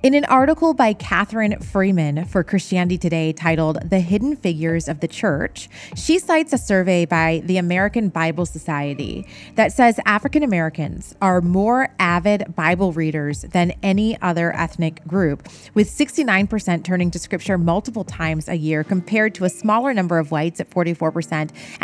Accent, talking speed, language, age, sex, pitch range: American, 155 wpm, English, 30-49, female, 170-215 Hz